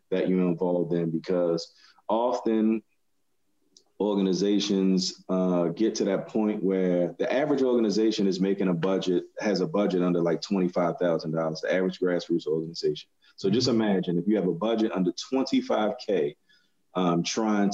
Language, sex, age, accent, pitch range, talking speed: English, male, 30-49, American, 90-100 Hz, 155 wpm